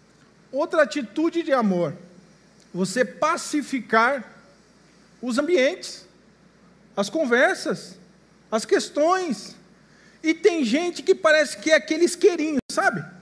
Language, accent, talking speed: Portuguese, Brazilian, 100 wpm